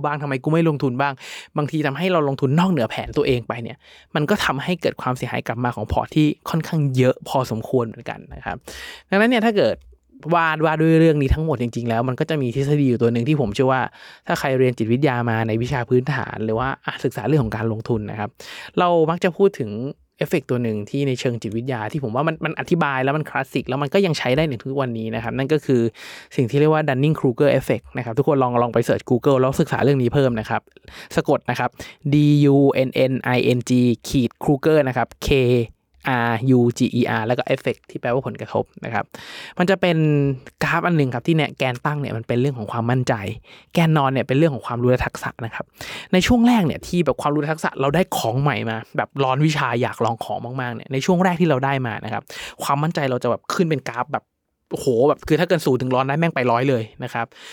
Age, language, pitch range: 20-39, Thai, 120-155 Hz